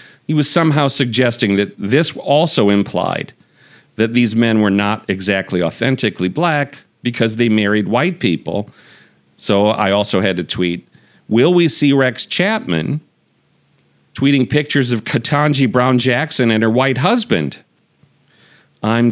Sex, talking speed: male, 135 wpm